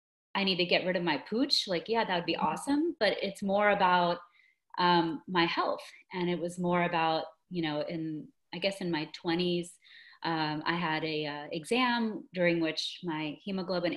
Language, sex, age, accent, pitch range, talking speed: English, female, 30-49, American, 165-205 Hz, 185 wpm